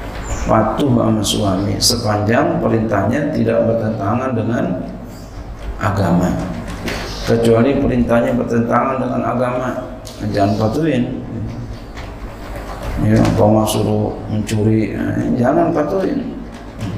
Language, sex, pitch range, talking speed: Indonesian, male, 105-120 Hz, 80 wpm